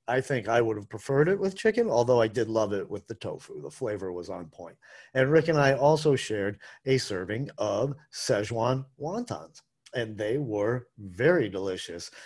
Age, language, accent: 50-69, English, American